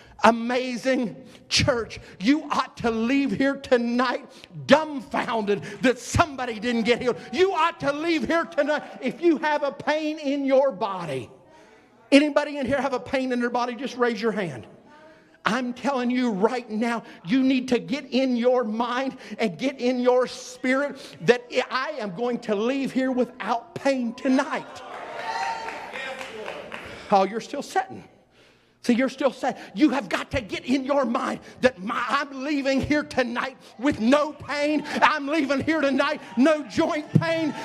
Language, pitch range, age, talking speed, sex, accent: English, 245-305 Hz, 50-69, 160 wpm, male, American